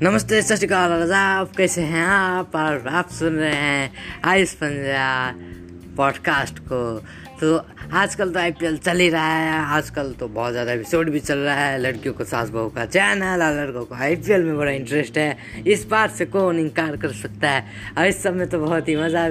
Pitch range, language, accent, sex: 145-185 Hz, Hindi, native, female